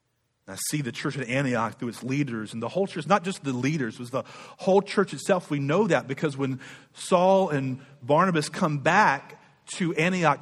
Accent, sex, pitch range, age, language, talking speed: American, male, 120-165 Hz, 40-59, English, 200 wpm